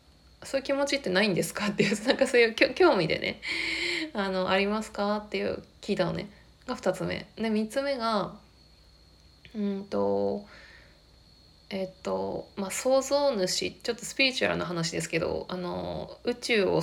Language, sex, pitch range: Japanese, female, 165-225 Hz